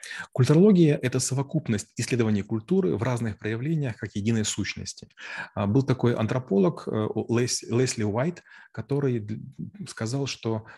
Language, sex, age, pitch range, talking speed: Russian, male, 30-49, 105-125 Hz, 110 wpm